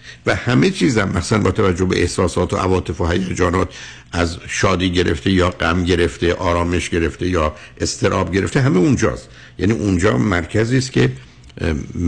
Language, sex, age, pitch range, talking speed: Persian, male, 60-79, 85-115 Hz, 150 wpm